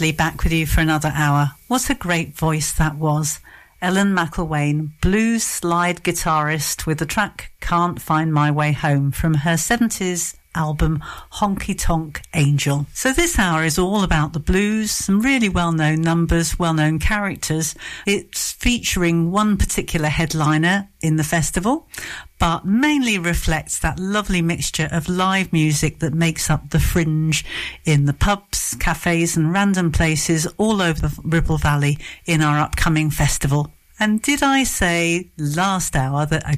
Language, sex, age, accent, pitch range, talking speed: English, female, 50-69, British, 155-185 Hz, 150 wpm